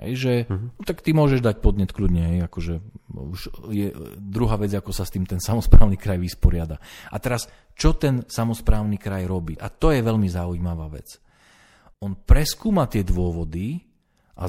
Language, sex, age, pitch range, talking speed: Slovak, male, 40-59, 95-125 Hz, 155 wpm